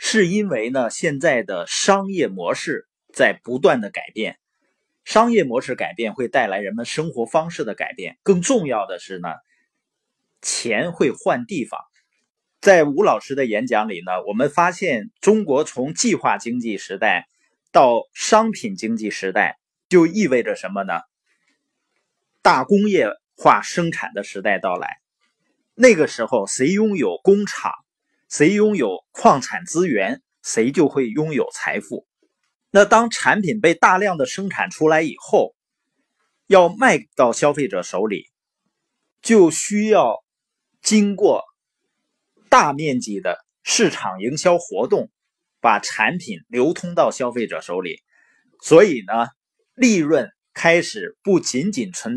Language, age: Chinese, 30-49